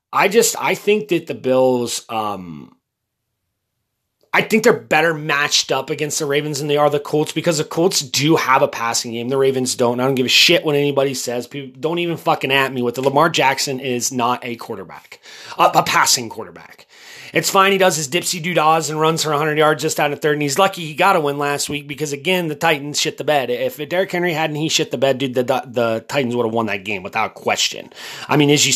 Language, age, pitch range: English, 30-49, 130-165 Hz